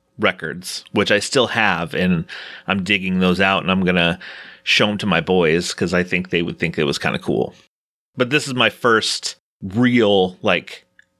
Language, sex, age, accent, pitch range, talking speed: English, male, 30-49, American, 95-115 Hz, 195 wpm